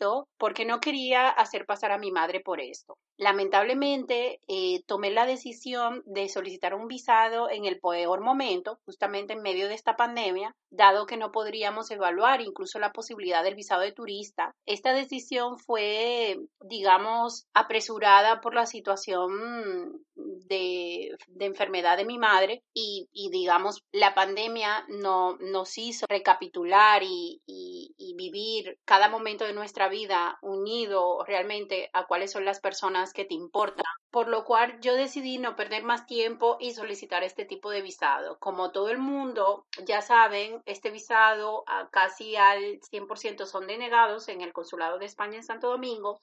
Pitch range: 200-240 Hz